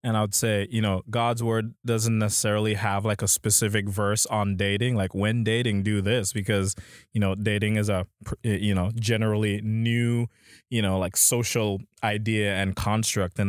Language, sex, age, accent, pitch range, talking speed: English, male, 20-39, American, 100-110 Hz, 180 wpm